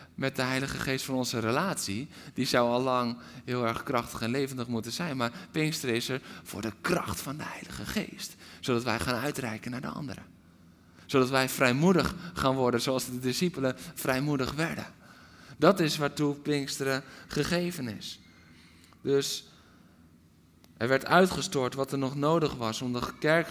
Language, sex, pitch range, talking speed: Dutch, male, 105-145 Hz, 165 wpm